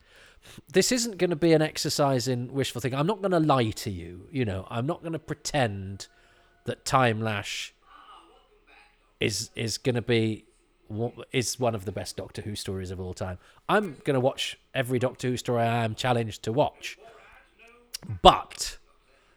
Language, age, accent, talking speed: English, 40-59, British, 175 wpm